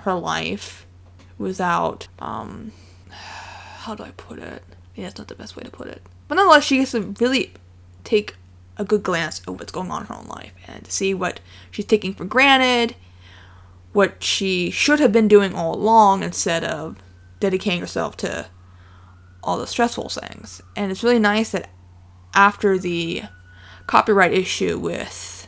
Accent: American